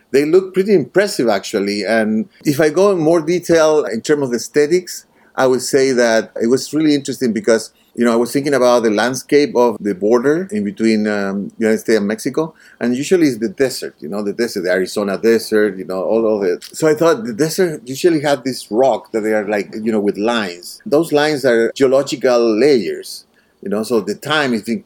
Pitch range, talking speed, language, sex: 110-145 Hz, 215 wpm, English, male